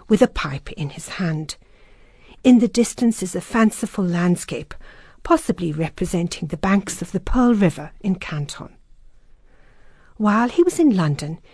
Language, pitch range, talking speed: English, 170-235 Hz, 145 wpm